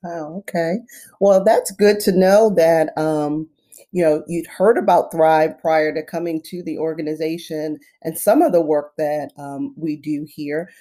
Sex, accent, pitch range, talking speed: female, American, 150-175 Hz, 170 wpm